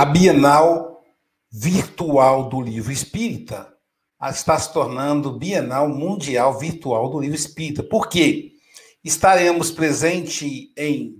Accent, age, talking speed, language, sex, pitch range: Brazilian, 60-79, 105 wpm, Portuguese, male, 145-195 Hz